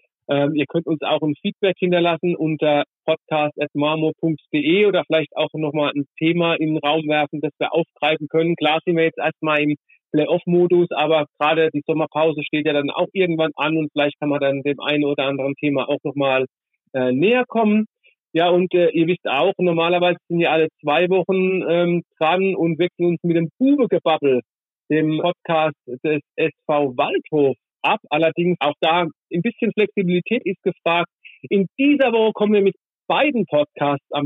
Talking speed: 175 wpm